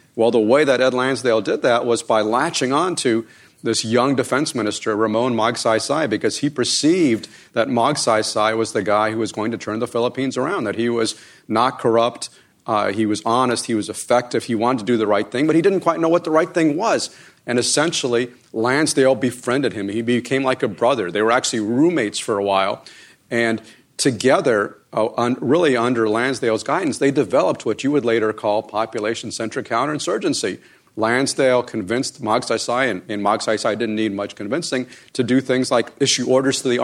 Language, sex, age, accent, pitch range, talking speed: English, male, 40-59, American, 115-150 Hz, 185 wpm